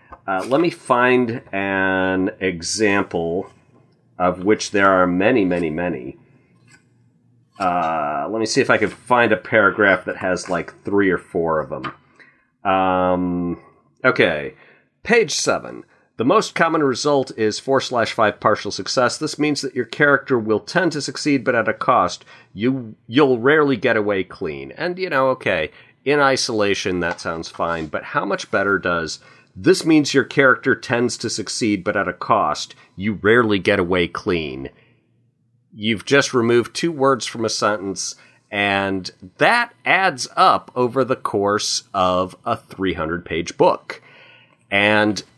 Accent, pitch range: American, 95-135 Hz